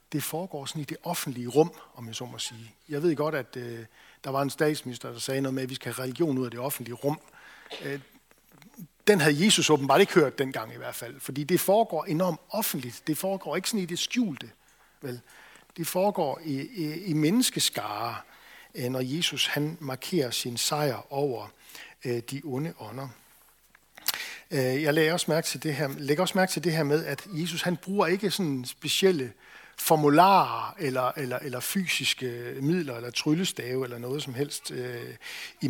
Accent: native